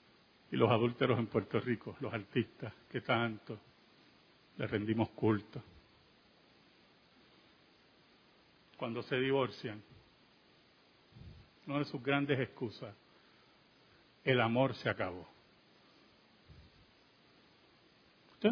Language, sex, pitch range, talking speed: Spanish, male, 125-185 Hz, 85 wpm